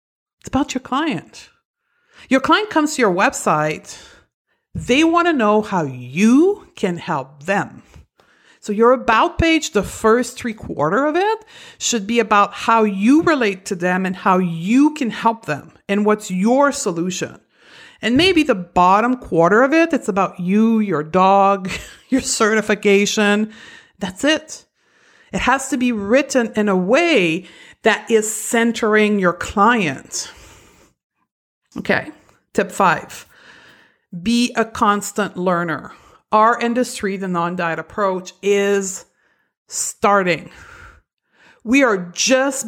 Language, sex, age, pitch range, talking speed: English, female, 50-69, 190-250 Hz, 130 wpm